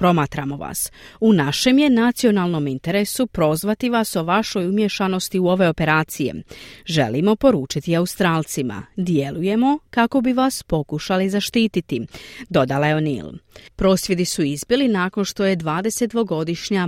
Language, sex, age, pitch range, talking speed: Croatian, female, 40-59, 165-225 Hz, 120 wpm